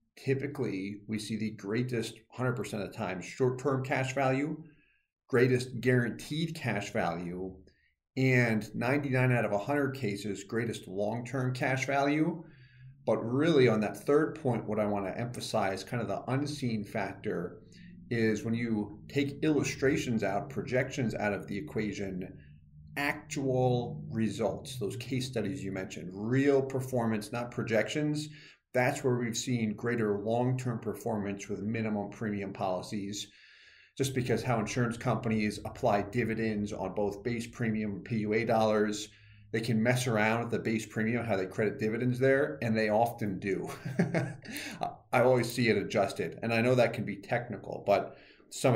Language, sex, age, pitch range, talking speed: English, male, 40-59, 105-130 Hz, 145 wpm